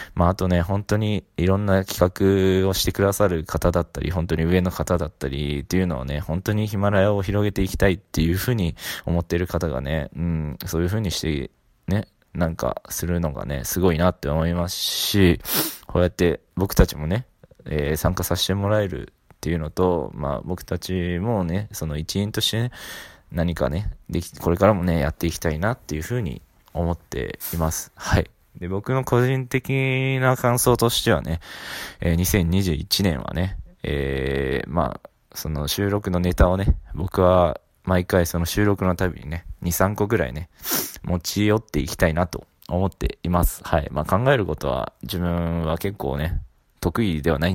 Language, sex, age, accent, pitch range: Japanese, male, 20-39, native, 80-100 Hz